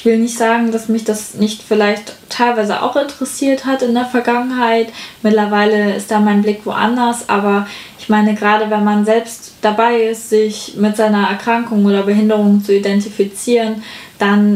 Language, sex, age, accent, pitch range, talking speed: German, female, 10-29, German, 210-235 Hz, 165 wpm